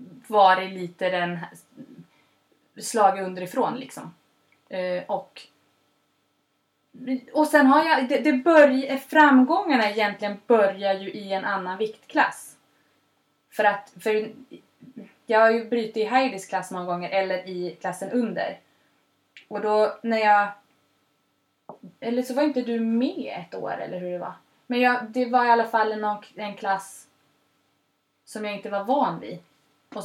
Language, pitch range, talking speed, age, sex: Swedish, 200-255 Hz, 145 wpm, 20-39, female